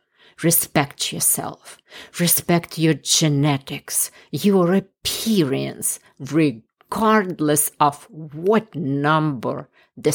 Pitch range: 135-175 Hz